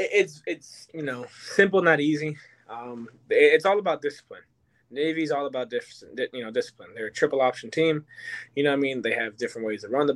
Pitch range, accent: 140-190 Hz, American